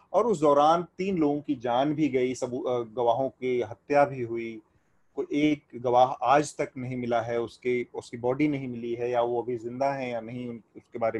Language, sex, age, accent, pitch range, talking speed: Hindi, male, 30-49, native, 125-155 Hz, 210 wpm